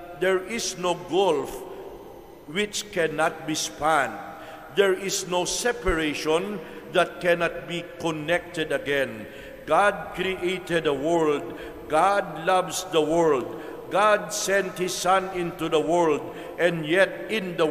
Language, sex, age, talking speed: English, male, 60-79, 120 wpm